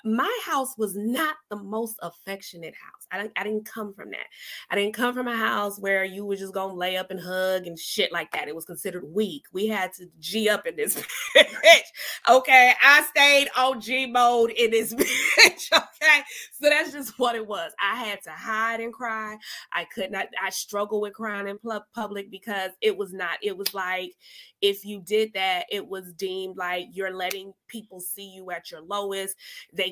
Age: 20-39